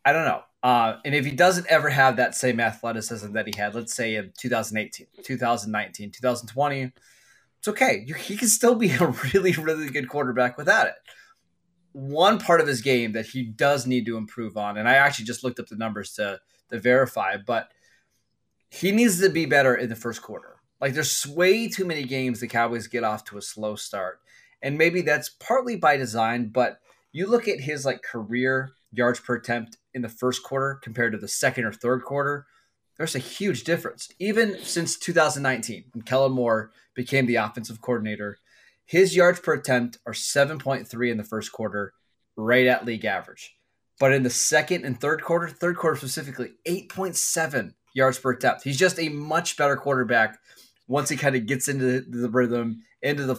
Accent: American